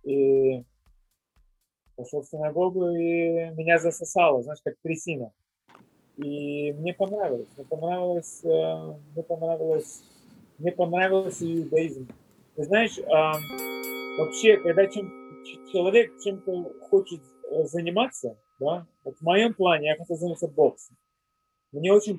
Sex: male